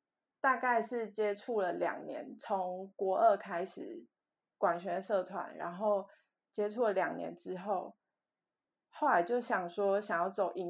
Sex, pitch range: female, 185-235 Hz